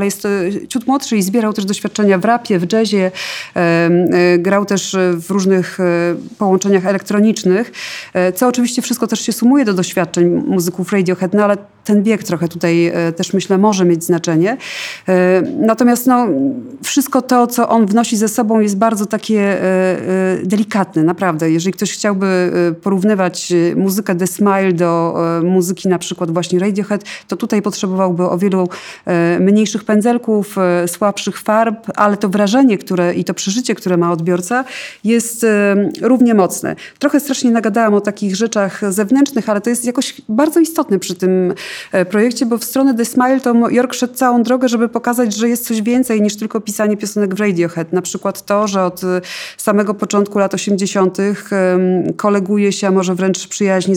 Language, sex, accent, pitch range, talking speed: Polish, female, native, 185-220 Hz, 155 wpm